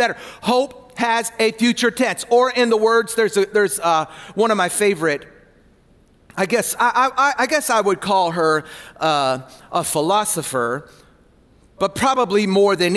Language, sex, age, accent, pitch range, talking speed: English, male, 40-59, American, 180-245 Hz, 160 wpm